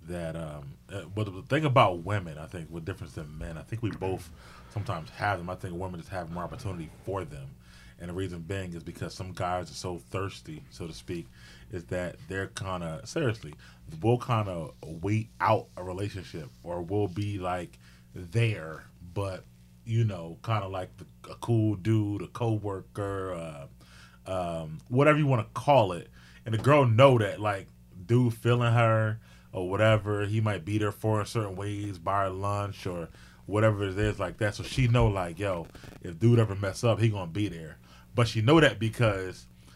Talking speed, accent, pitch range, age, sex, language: 195 wpm, American, 85-110 Hz, 30-49, male, English